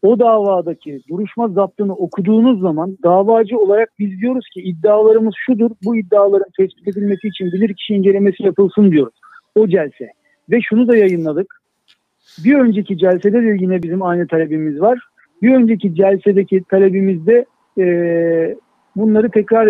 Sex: male